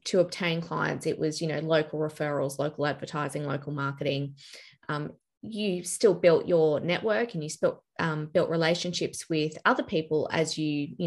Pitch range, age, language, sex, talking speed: 150-170 Hz, 20-39, English, female, 170 wpm